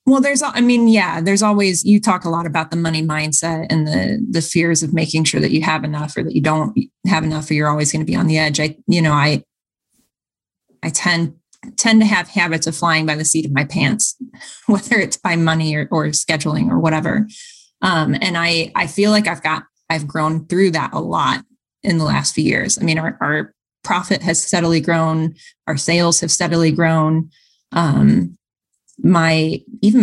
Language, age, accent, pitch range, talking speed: English, 20-39, American, 160-205 Hz, 205 wpm